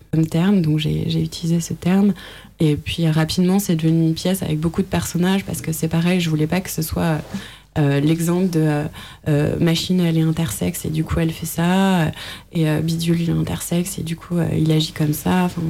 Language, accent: French, French